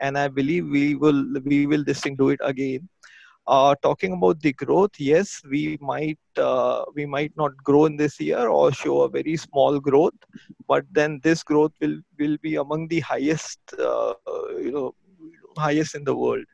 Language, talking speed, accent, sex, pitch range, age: English, 180 wpm, Indian, male, 140-170 Hz, 30-49